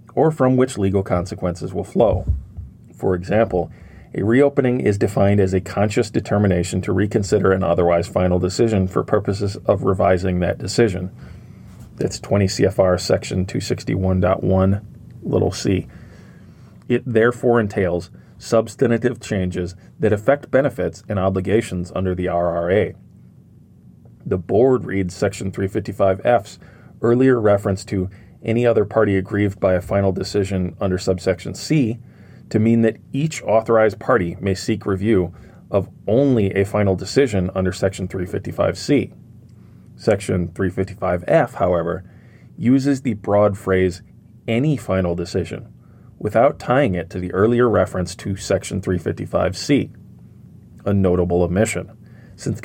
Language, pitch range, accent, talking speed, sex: English, 95-110 Hz, American, 125 wpm, male